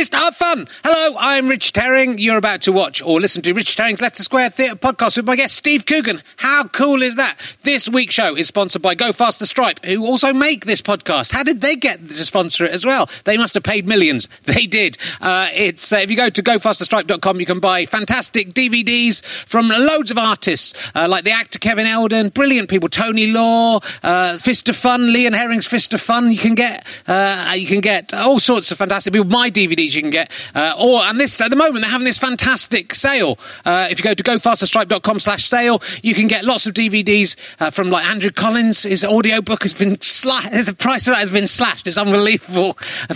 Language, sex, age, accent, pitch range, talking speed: English, male, 30-49, British, 195-250 Hz, 215 wpm